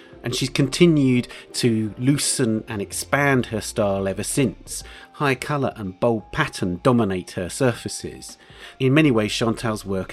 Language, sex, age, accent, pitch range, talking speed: English, male, 40-59, British, 95-125 Hz, 140 wpm